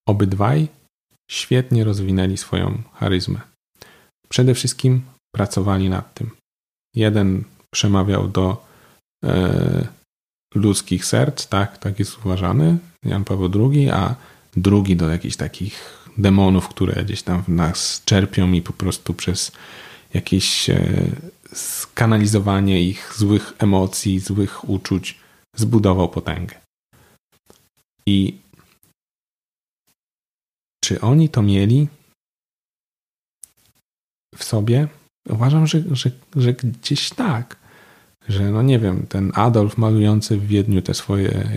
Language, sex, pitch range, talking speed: Polish, male, 95-125 Hz, 105 wpm